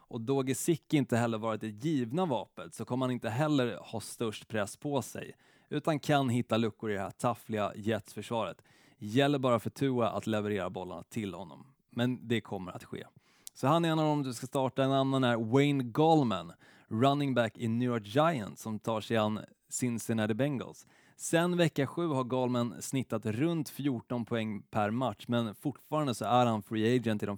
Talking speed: 195 wpm